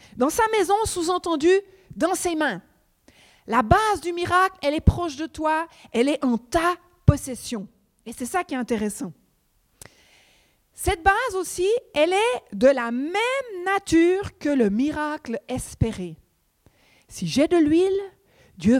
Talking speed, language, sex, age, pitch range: 145 wpm, French, female, 50-69, 220-360 Hz